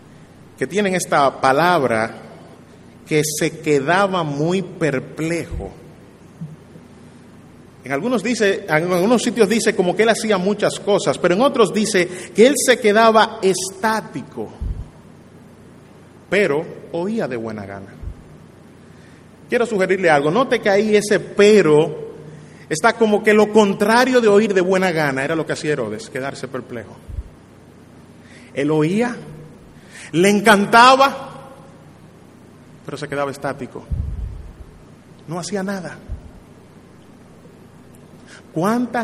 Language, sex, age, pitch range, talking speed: Spanish, male, 30-49, 135-200 Hz, 110 wpm